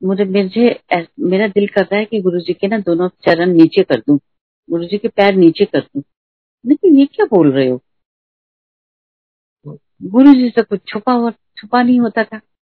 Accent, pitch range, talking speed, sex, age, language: native, 155-200 Hz, 145 wpm, female, 50-69, Hindi